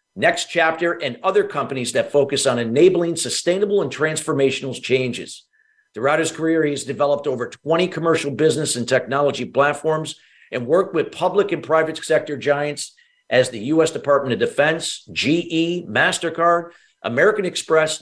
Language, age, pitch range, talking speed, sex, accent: English, 50-69, 140-170 Hz, 145 wpm, male, American